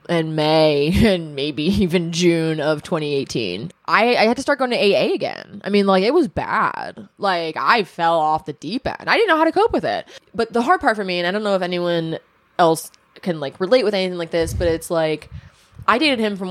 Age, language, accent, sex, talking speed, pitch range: 20-39, English, American, female, 235 wpm, 160-190 Hz